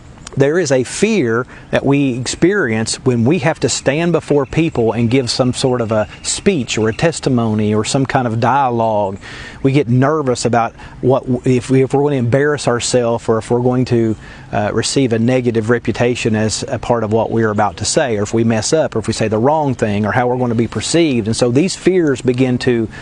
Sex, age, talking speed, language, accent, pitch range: male, 40-59, 225 wpm, English, American, 115-145 Hz